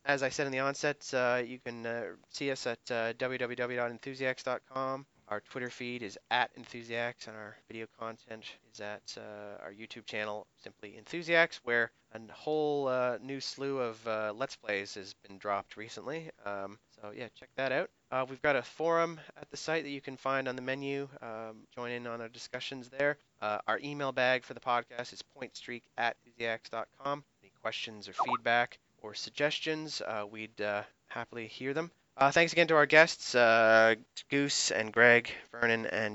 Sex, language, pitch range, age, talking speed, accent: male, English, 115-135 Hz, 30-49, 180 wpm, American